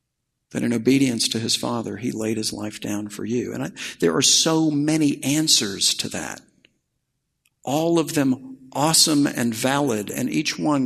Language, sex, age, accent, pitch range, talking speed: English, male, 60-79, American, 105-145 Hz, 165 wpm